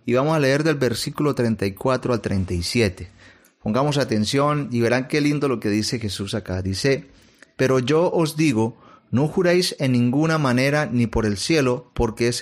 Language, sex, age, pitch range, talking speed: Spanish, male, 40-59, 110-145 Hz, 175 wpm